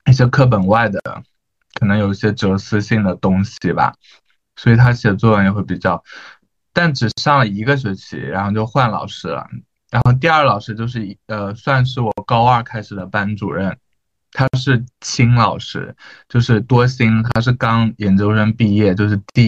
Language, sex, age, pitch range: Chinese, male, 20-39, 100-125 Hz